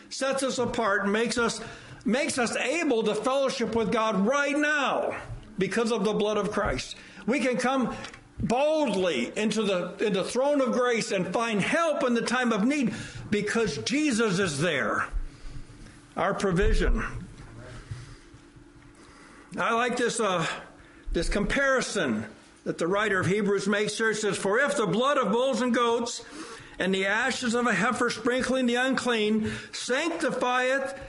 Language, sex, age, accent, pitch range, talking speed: English, male, 60-79, American, 210-255 Hz, 150 wpm